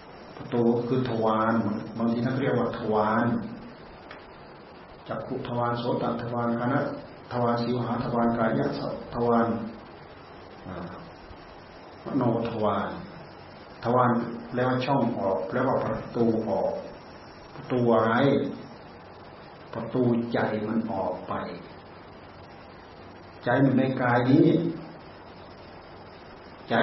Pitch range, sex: 115-140 Hz, male